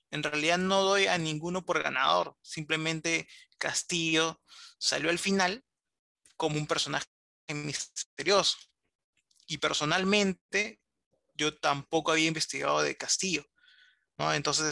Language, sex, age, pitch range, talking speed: Spanish, male, 20-39, 150-190 Hz, 110 wpm